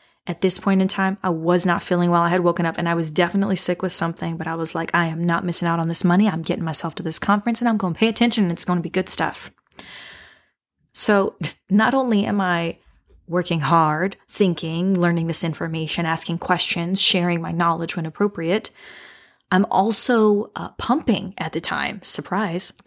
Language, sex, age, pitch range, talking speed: English, female, 20-39, 175-210 Hz, 205 wpm